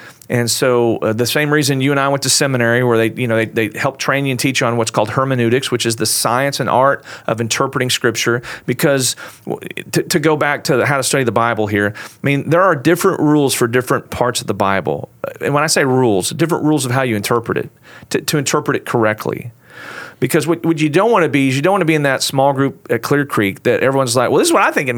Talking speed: 260 wpm